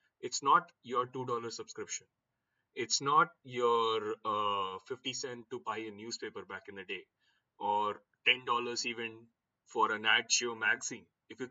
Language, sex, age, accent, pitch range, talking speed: English, male, 20-39, Indian, 110-145 Hz, 155 wpm